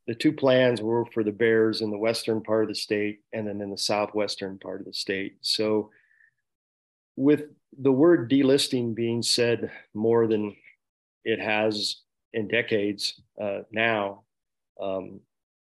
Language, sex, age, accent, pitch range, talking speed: English, male, 40-59, American, 105-115 Hz, 150 wpm